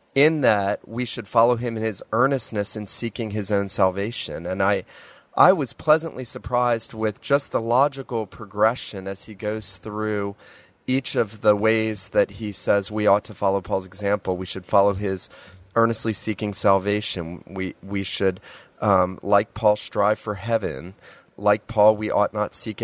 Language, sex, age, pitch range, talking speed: English, male, 30-49, 100-115 Hz, 170 wpm